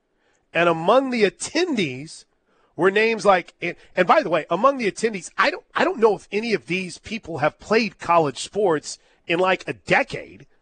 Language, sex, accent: English, male, American